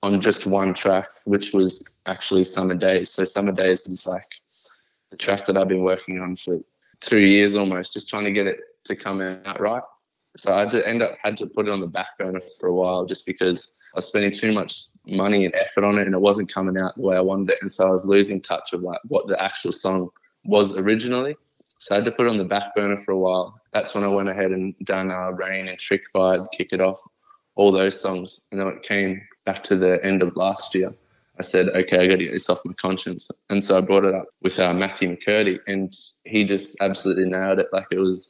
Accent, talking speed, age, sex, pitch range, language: Australian, 250 wpm, 20-39, male, 95-100 Hz, English